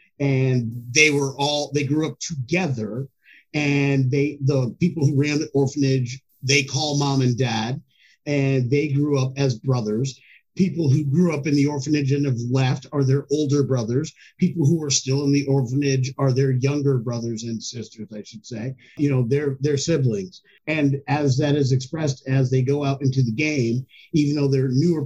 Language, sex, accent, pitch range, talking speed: English, male, American, 130-155 Hz, 185 wpm